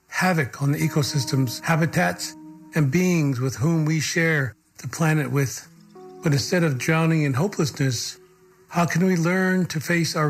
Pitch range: 140-165 Hz